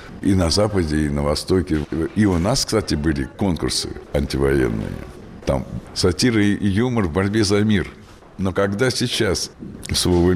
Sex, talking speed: male, 145 wpm